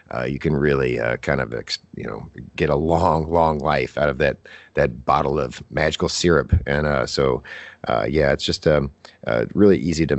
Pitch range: 75-90 Hz